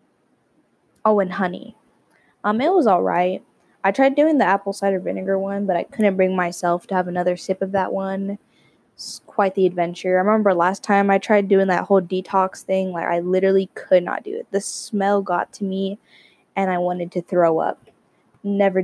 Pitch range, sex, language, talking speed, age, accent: 180-205 Hz, female, English, 200 wpm, 10-29, American